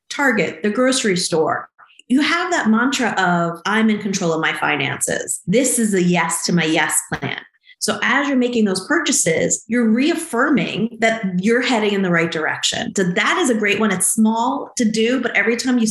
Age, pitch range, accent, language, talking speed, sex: 30-49, 190-245 Hz, American, English, 195 wpm, female